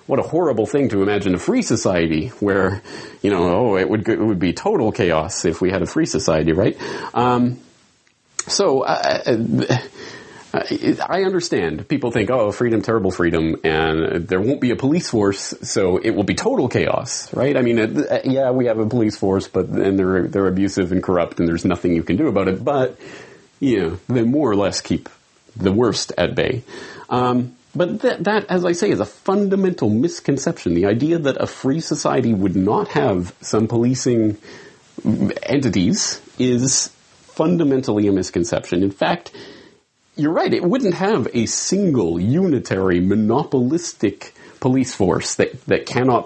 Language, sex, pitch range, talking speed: English, male, 95-130 Hz, 170 wpm